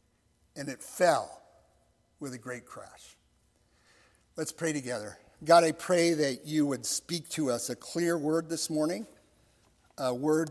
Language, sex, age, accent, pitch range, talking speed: English, male, 50-69, American, 145-230 Hz, 150 wpm